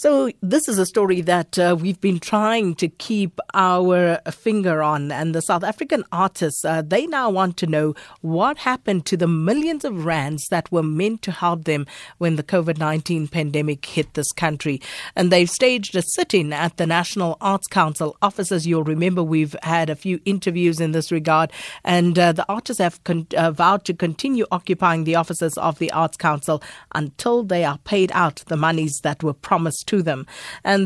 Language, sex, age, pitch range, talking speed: English, female, 50-69, 160-190 Hz, 190 wpm